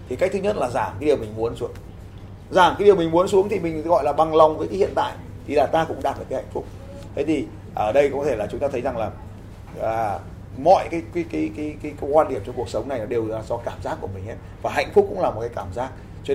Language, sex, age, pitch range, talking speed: Vietnamese, male, 20-39, 100-155 Hz, 295 wpm